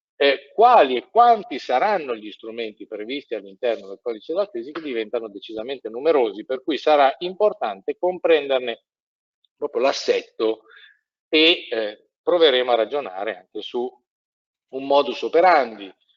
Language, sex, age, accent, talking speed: Italian, male, 50-69, native, 125 wpm